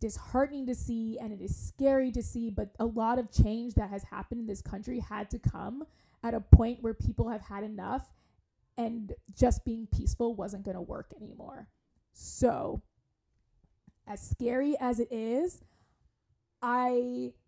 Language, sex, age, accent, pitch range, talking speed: English, female, 20-39, American, 220-260 Hz, 160 wpm